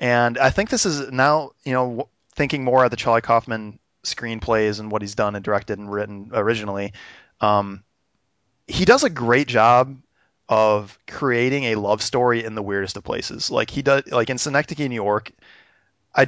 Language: English